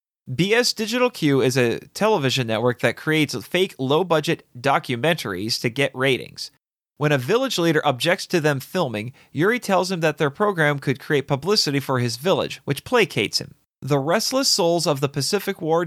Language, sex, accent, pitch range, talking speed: English, male, American, 130-175 Hz, 175 wpm